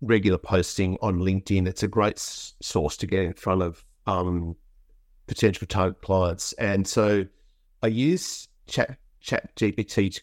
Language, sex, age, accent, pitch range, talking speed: English, male, 50-69, Australian, 95-110 Hz, 140 wpm